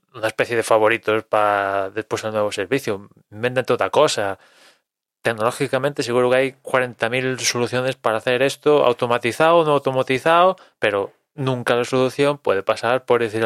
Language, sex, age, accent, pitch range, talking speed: Spanish, male, 20-39, Spanish, 110-140 Hz, 145 wpm